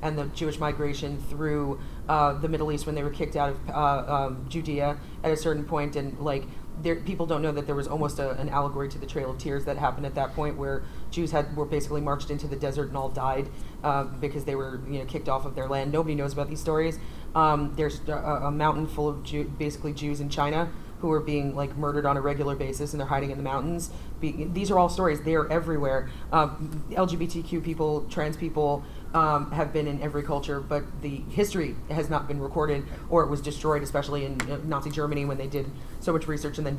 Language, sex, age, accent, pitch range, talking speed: English, female, 30-49, American, 140-155 Hz, 235 wpm